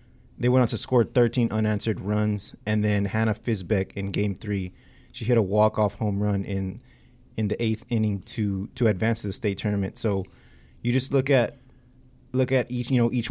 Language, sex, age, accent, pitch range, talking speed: English, male, 20-39, American, 100-115 Hz, 200 wpm